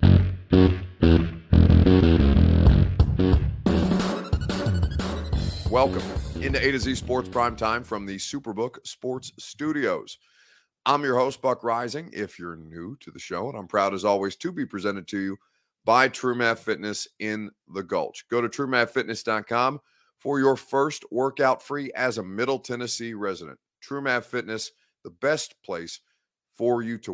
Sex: male